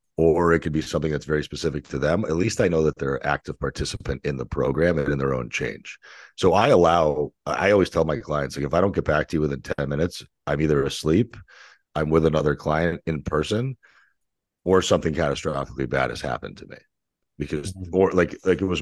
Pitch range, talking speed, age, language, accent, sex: 65-80 Hz, 220 wpm, 40-59, English, American, male